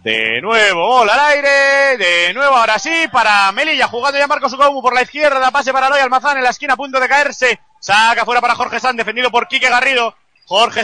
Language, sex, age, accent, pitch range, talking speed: Spanish, male, 30-49, Spanish, 215-260 Hz, 220 wpm